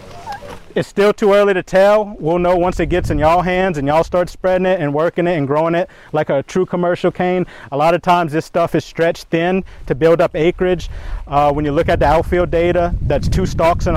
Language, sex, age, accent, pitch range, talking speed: English, male, 30-49, American, 150-175 Hz, 235 wpm